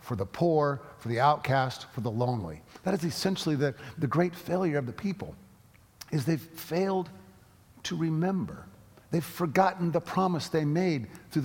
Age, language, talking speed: 50-69, English, 165 wpm